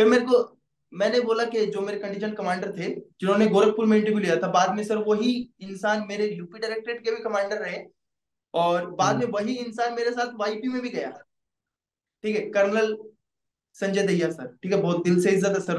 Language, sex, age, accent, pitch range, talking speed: Hindi, male, 20-39, native, 195-230 Hz, 70 wpm